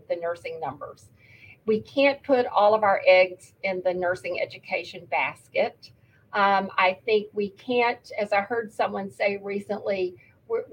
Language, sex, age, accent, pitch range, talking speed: English, female, 50-69, American, 190-245 Hz, 145 wpm